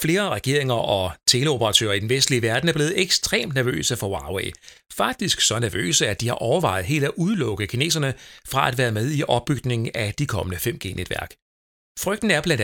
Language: Danish